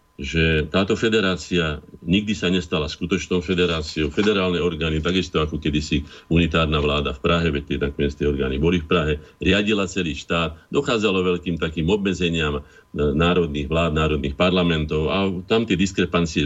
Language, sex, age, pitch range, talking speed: Slovak, male, 50-69, 75-95 Hz, 145 wpm